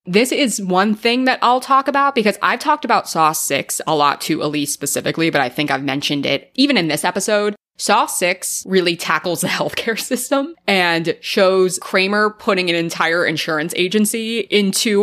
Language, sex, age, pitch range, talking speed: English, female, 20-39, 150-205 Hz, 180 wpm